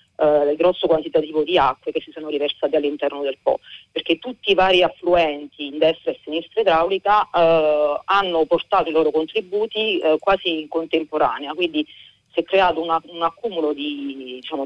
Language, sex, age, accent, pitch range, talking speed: Italian, female, 30-49, native, 145-170 Hz, 175 wpm